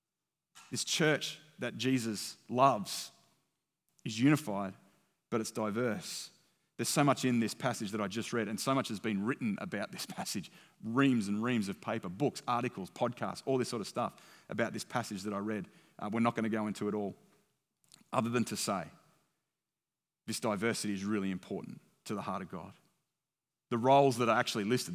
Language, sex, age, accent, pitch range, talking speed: English, male, 30-49, Australian, 105-130 Hz, 185 wpm